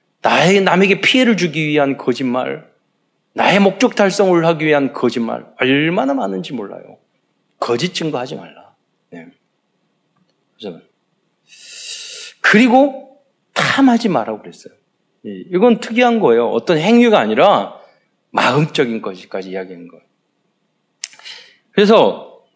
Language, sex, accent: Korean, male, native